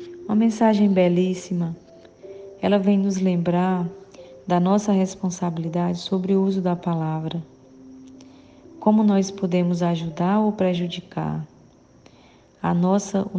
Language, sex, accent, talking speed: Portuguese, female, Brazilian, 100 wpm